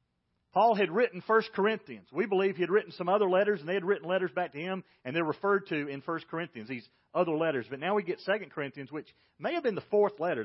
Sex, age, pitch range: male, 40-59, 125-200 Hz